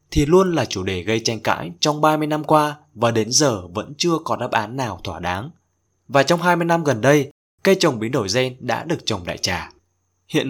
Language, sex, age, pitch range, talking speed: Vietnamese, male, 20-39, 110-150 Hz, 230 wpm